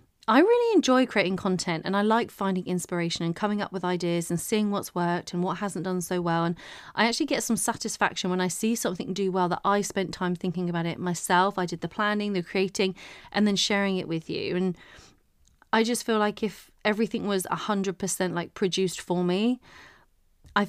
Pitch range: 180-210 Hz